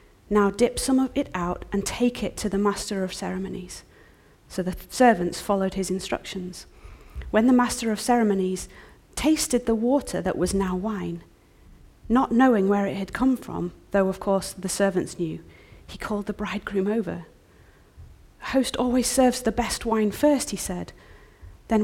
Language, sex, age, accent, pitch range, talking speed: English, female, 40-59, British, 160-215 Hz, 165 wpm